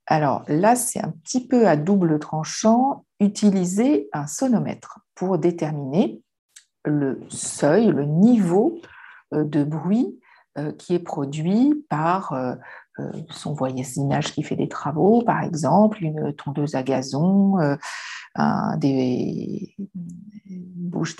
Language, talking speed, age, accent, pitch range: French, 110 wpm, 50-69, French, 150-200 Hz